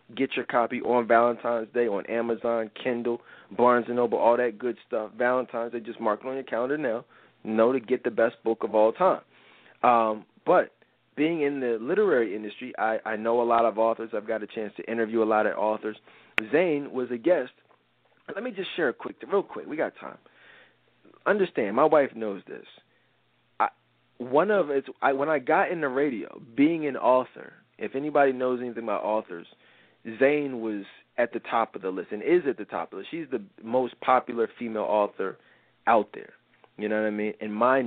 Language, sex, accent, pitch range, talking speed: English, male, American, 115-135 Hz, 205 wpm